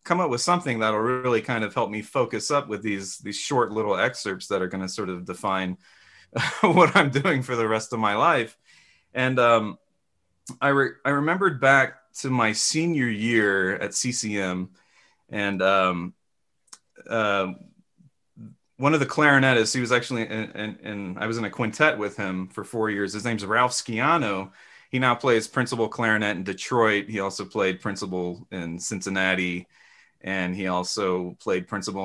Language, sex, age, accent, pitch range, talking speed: English, male, 30-49, American, 100-135 Hz, 170 wpm